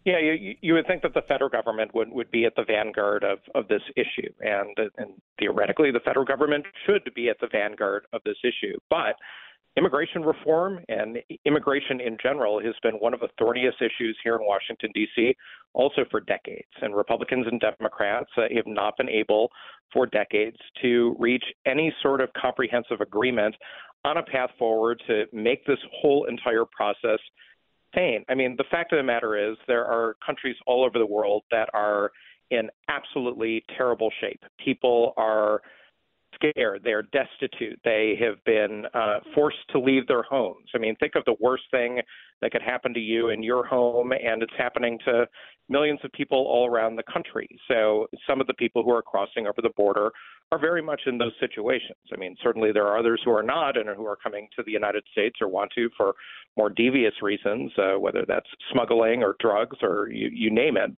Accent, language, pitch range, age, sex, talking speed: American, English, 115-145 Hz, 40-59, male, 190 wpm